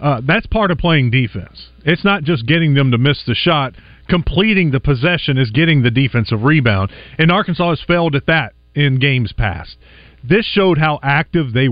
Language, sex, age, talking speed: English, male, 40-59, 190 wpm